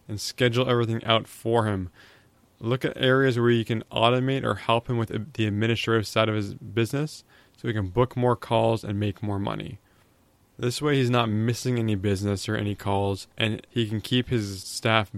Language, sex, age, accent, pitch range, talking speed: English, male, 20-39, American, 105-125 Hz, 195 wpm